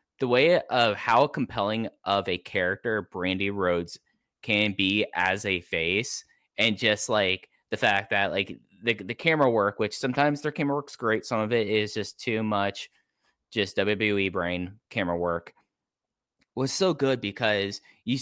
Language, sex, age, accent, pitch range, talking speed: English, male, 10-29, American, 95-115 Hz, 160 wpm